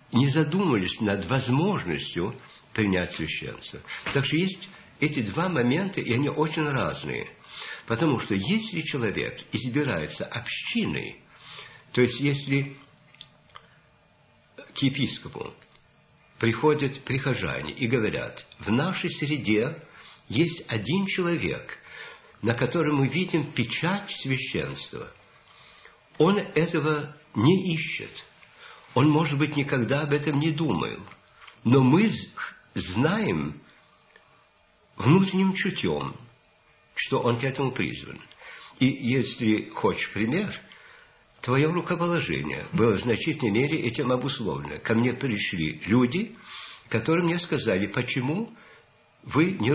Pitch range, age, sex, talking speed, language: 125-165 Hz, 60-79, male, 105 wpm, Russian